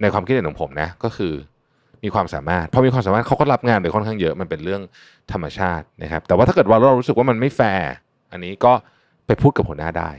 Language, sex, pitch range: Thai, male, 90-130 Hz